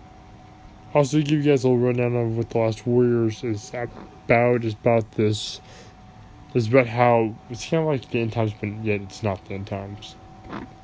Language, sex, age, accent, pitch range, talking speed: English, male, 20-39, American, 100-115 Hz, 190 wpm